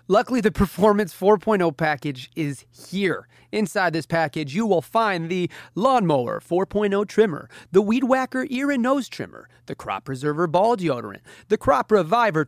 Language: English